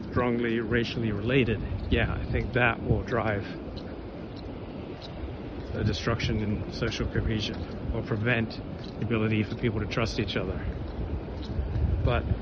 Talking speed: 120 wpm